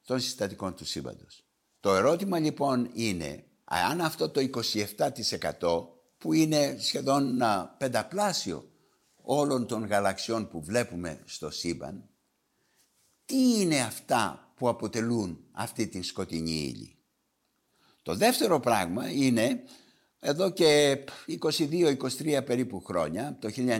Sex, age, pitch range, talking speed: male, 60-79, 110-160 Hz, 105 wpm